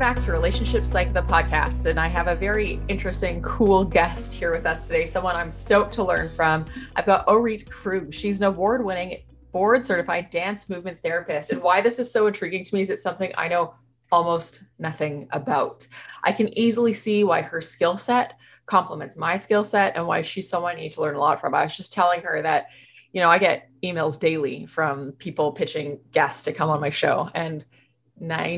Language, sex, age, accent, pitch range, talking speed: English, female, 20-39, American, 155-205 Hz, 205 wpm